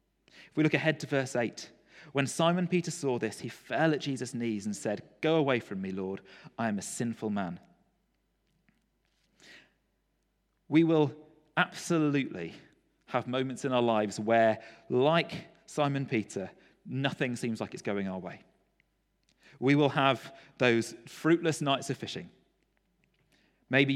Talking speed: 145 wpm